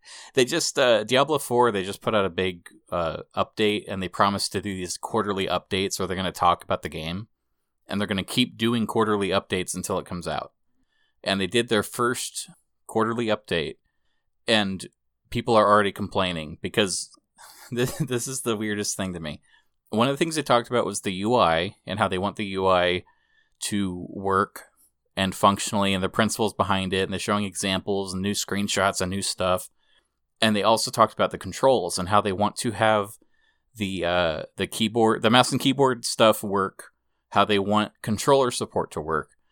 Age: 30-49